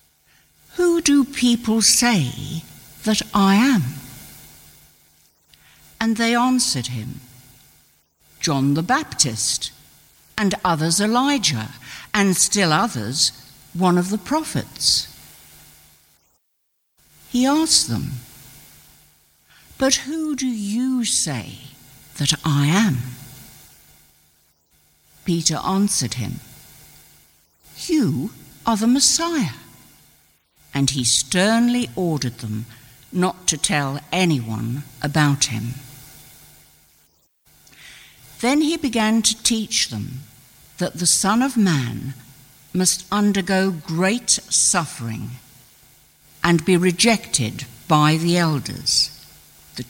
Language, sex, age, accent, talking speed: English, female, 60-79, British, 90 wpm